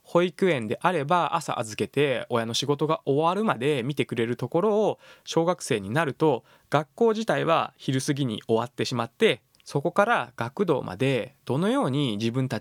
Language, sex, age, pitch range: Japanese, male, 20-39, 120-170 Hz